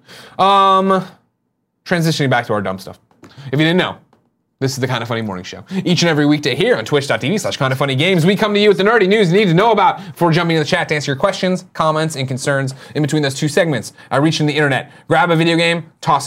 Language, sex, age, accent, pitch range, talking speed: English, male, 30-49, American, 110-175 Hz, 255 wpm